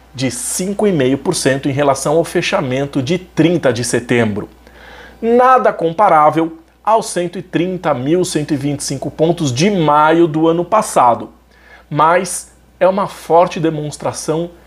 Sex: male